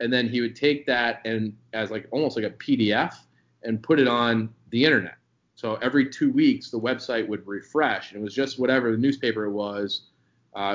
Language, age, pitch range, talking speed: English, 20-39, 105-120 Hz, 200 wpm